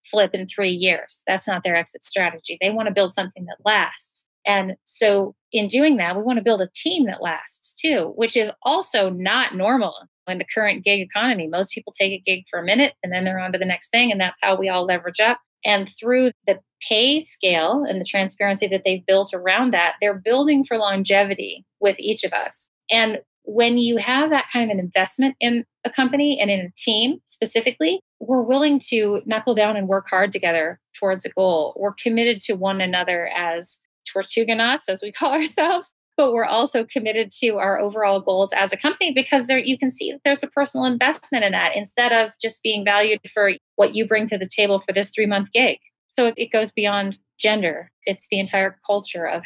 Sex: female